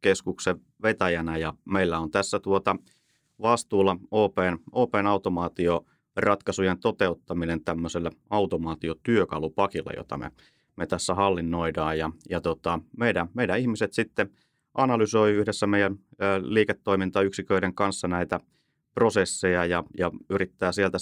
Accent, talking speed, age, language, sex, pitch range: native, 105 wpm, 30-49, Finnish, male, 85-100 Hz